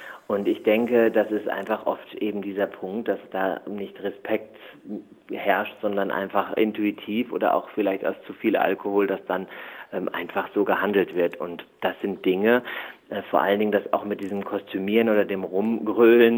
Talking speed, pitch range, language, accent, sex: 175 wpm, 100-115 Hz, German, German, male